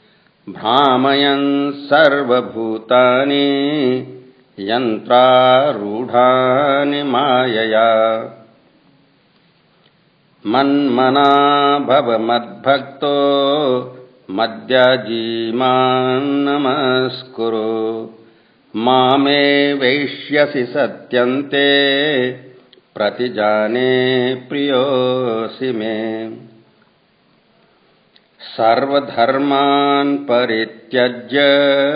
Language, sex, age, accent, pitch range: Hindi, male, 50-69, native, 120-140 Hz